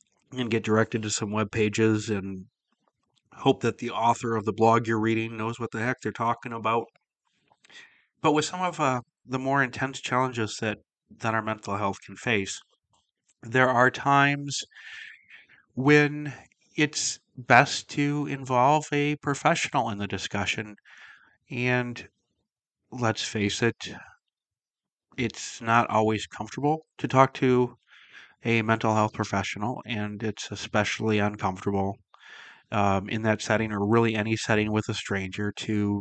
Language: English